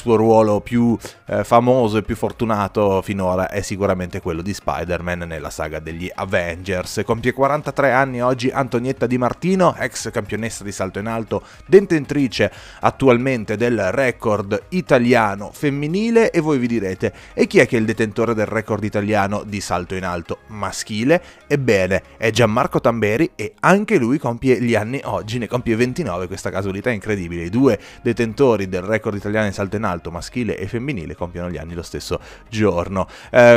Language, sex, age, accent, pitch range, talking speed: Italian, male, 30-49, native, 100-135 Hz, 170 wpm